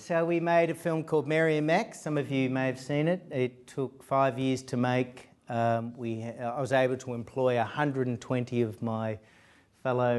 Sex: male